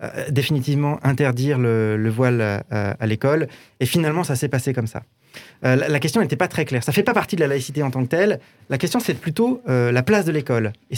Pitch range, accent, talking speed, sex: 125-180 Hz, French, 250 wpm, male